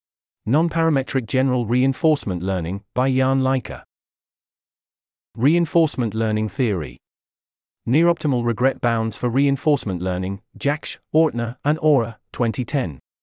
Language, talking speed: English, 95 wpm